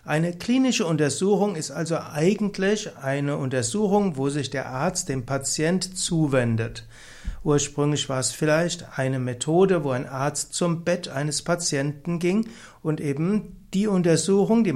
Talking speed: 140 wpm